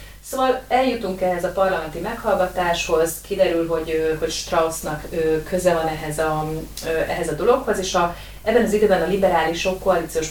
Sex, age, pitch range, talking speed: female, 30-49, 160-185 Hz, 145 wpm